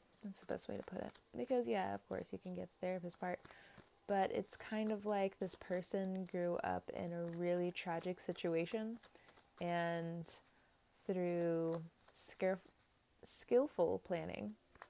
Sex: female